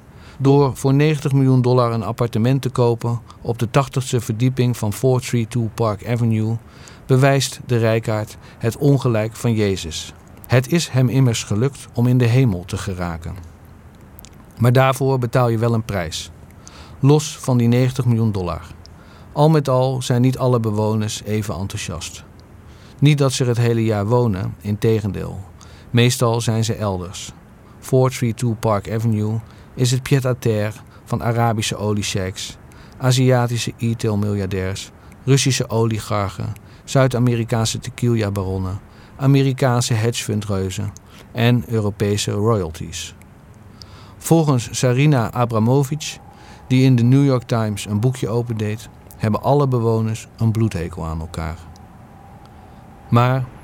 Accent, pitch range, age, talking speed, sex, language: Dutch, 100-125 Hz, 50-69, 125 wpm, male, Dutch